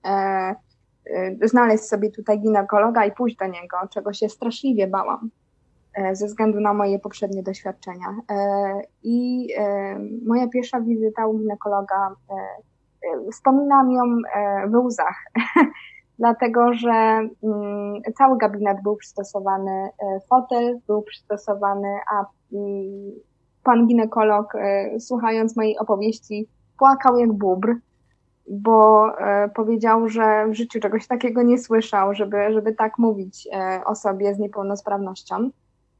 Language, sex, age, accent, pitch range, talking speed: Polish, female, 20-39, native, 205-235 Hz, 125 wpm